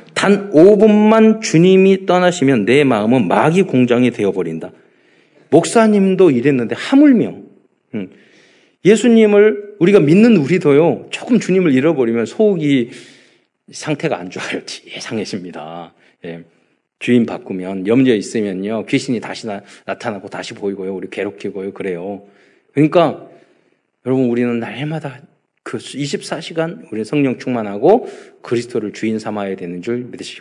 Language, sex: Korean, male